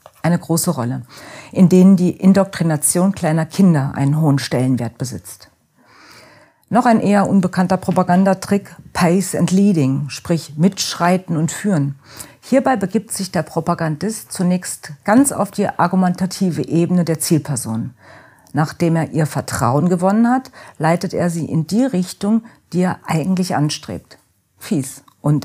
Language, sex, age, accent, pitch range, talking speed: German, female, 50-69, German, 150-190 Hz, 130 wpm